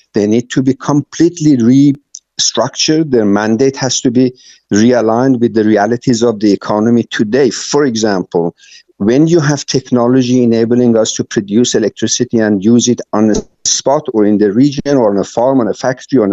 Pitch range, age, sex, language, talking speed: 110-135 Hz, 50-69, male, English, 175 wpm